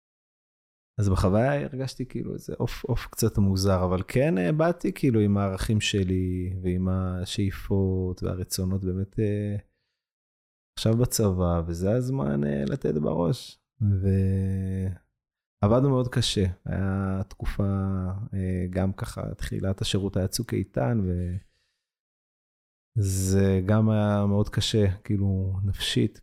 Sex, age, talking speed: male, 20-39, 105 wpm